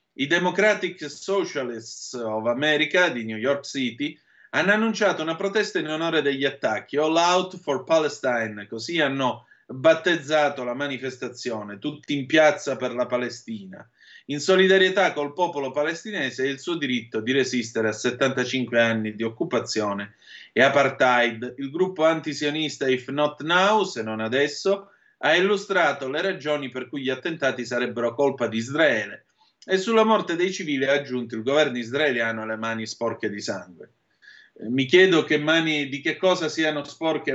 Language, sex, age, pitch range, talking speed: Italian, male, 30-49, 120-155 Hz, 155 wpm